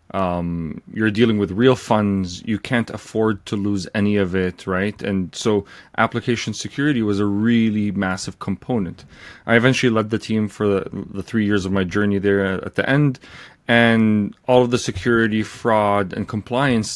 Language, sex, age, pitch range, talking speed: English, male, 30-49, 100-115 Hz, 175 wpm